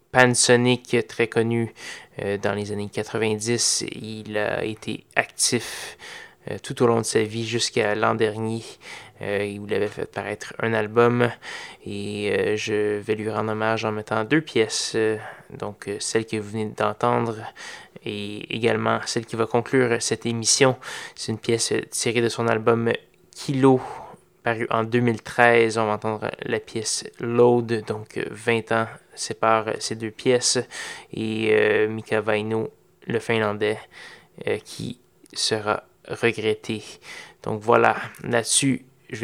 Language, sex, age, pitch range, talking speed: French, male, 20-39, 110-120 Hz, 145 wpm